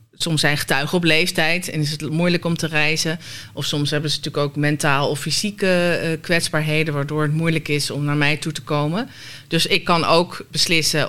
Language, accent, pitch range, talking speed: Dutch, Dutch, 145-170 Hz, 205 wpm